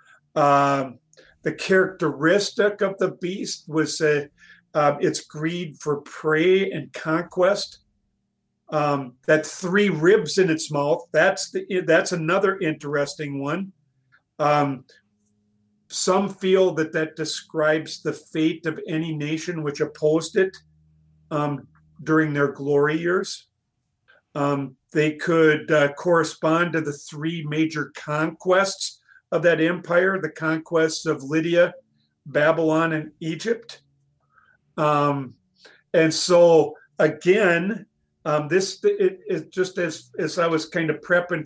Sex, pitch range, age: male, 150-180 Hz, 50-69